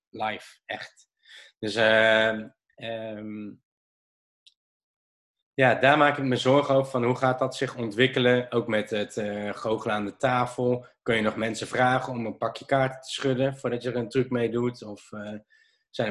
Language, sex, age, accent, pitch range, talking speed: Dutch, male, 20-39, Dutch, 115-140 Hz, 175 wpm